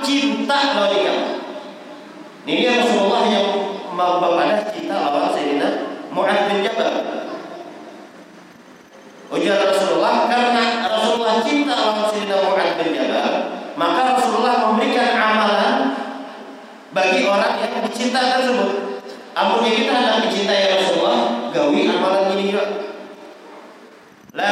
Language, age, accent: Indonesian, 40-59, native